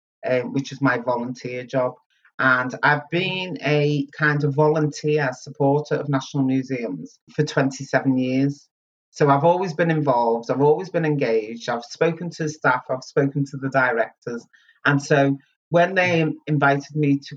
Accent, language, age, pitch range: British, English, 30-49, 130-150 Hz